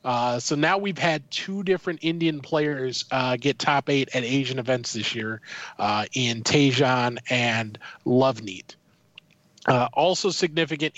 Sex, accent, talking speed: male, American, 140 wpm